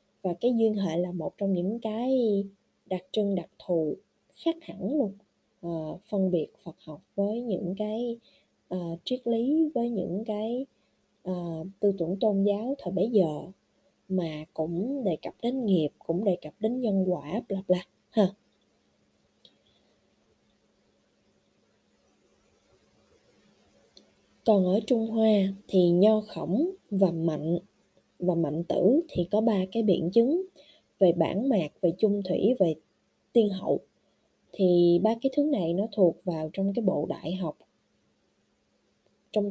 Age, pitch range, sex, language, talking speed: 20-39, 180-225 Hz, female, Vietnamese, 135 wpm